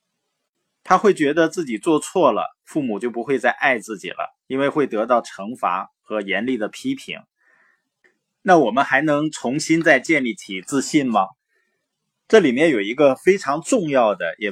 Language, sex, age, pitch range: Chinese, male, 20-39, 115-170 Hz